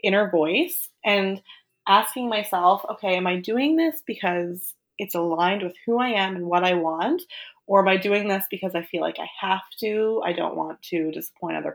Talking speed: 200 wpm